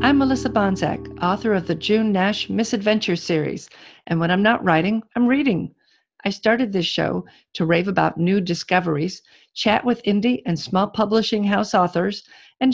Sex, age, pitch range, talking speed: female, 50-69, 180-225 Hz, 165 wpm